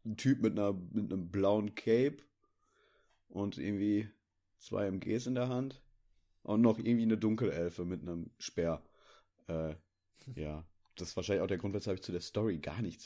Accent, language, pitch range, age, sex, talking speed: German, German, 90-110 Hz, 30-49, male, 175 wpm